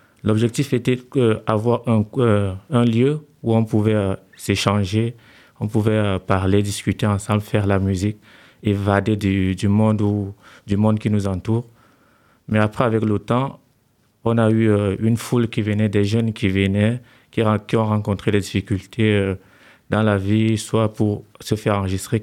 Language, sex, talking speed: French, male, 170 wpm